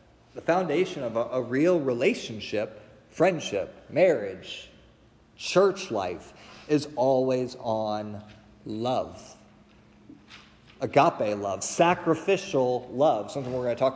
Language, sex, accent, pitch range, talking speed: English, male, American, 125-160 Hz, 105 wpm